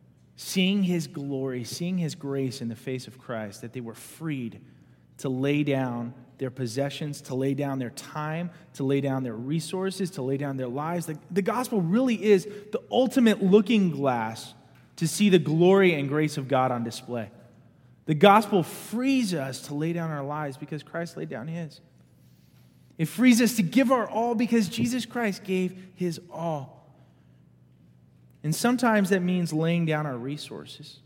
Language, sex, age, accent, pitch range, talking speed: English, male, 20-39, American, 125-175 Hz, 170 wpm